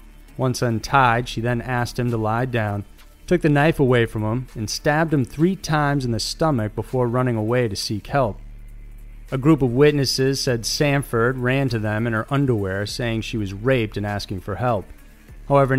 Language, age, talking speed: English, 30-49, 190 wpm